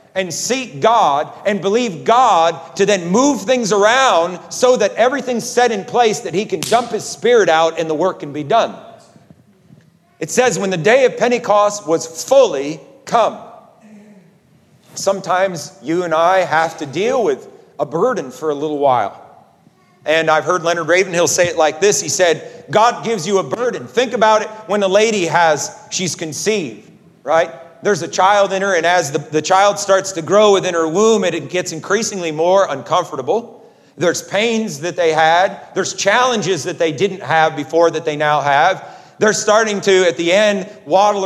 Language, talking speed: English, 180 wpm